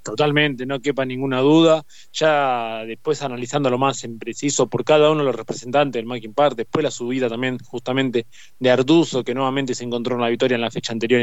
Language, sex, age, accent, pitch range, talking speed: Spanish, male, 20-39, Argentinian, 125-155 Hz, 210 wpm